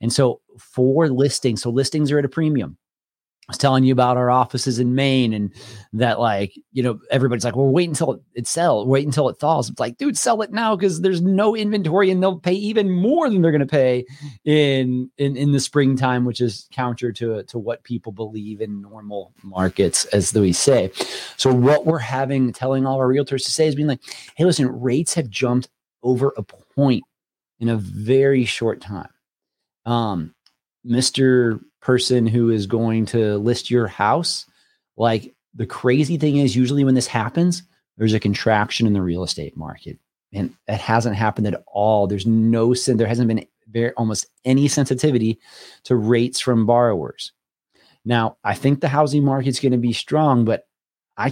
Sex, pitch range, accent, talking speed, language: male, 115-140 Hz, American, 185 wpm, English